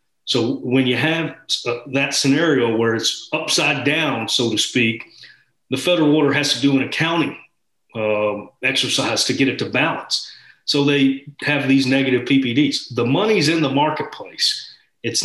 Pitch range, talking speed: 120-140 Hz, 155 wpm